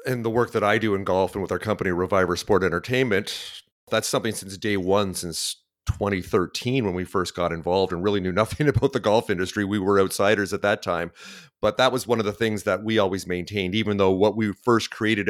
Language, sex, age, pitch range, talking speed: English, male, 30-49, 95-115 Hz, 230 wpm